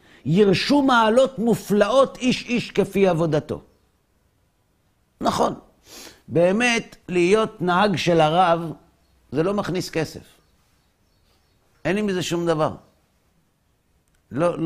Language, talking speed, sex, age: Hebrew, 95 wpm, male, 50-69